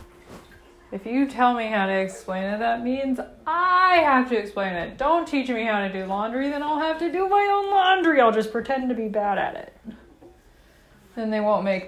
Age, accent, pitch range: 20-39, American, 180-235 Hz